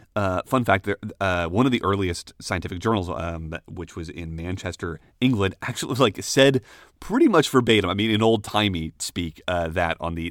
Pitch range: 90-125 Hz